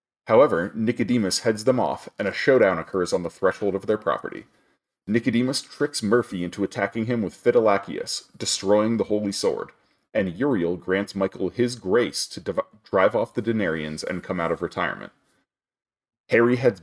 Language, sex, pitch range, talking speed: English, male, 95-120 Hz, 160 wpm